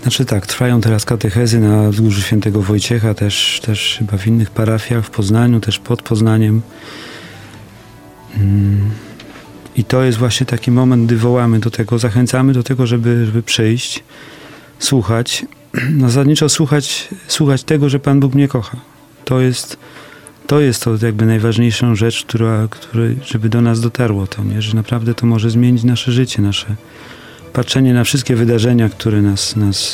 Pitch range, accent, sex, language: 110-130 Hz, native, male, Polish